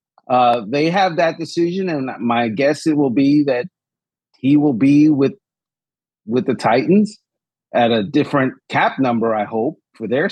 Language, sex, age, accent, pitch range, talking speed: English, male, 40-59, American, 145-185 Hz, 165 wpm